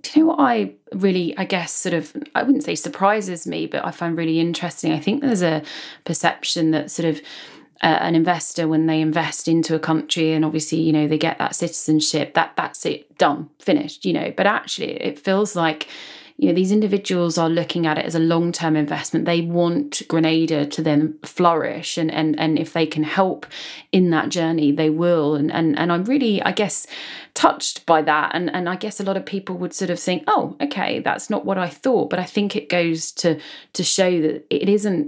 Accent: British